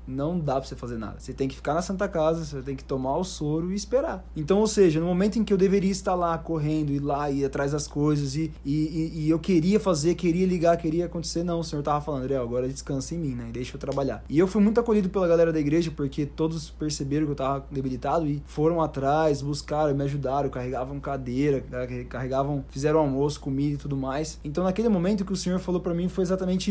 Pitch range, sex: 135-165 Hz, male